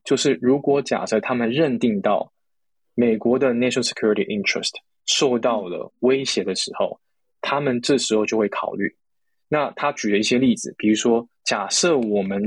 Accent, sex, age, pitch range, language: native, male, 20-39, 110-140 Hz, Chinese